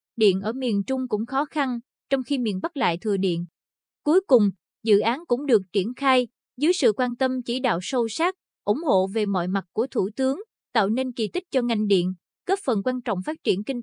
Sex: female